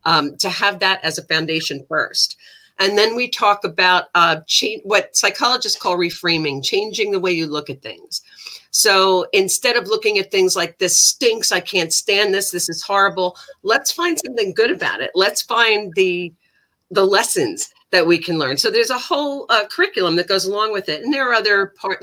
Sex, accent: female, American